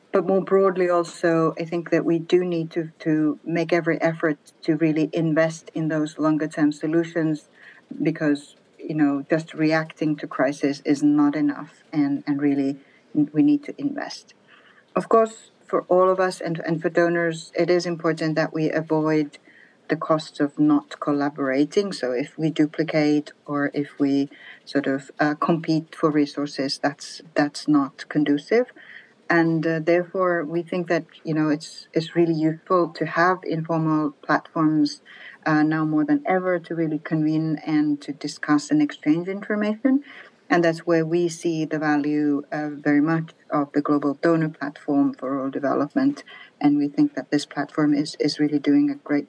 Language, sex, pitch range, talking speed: English, female, 145-165 Hz, 165 wpm